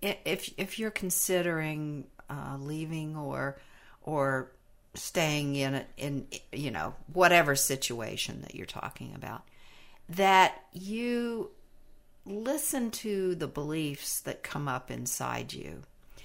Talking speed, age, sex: 115 wpm, 60-79, female